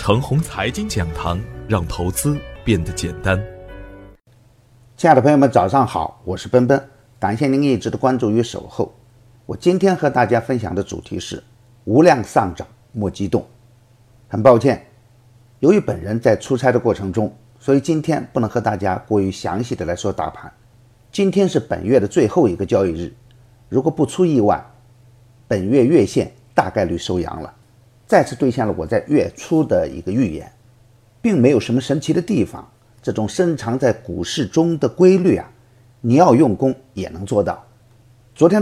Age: 50-69